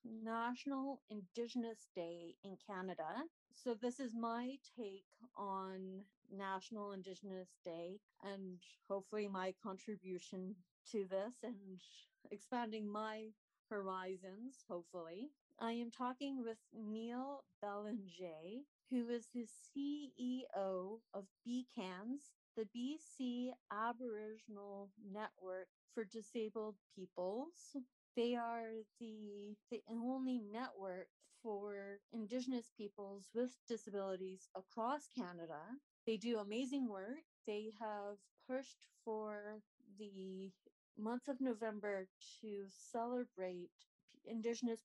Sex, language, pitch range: female, English, 195-240 Hz